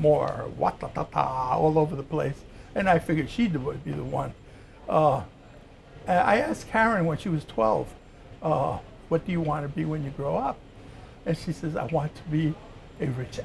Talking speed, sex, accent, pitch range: 190 wpm, male, American, 140-190 Hz